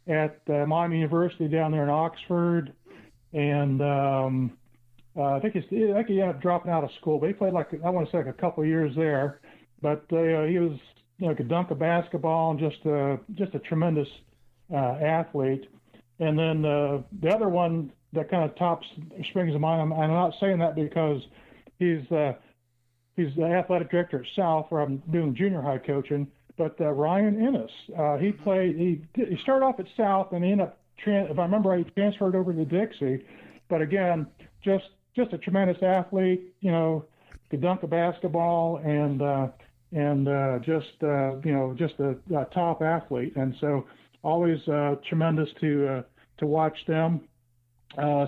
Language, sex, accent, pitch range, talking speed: English, male, American, 145-175 Hz, 185 wpm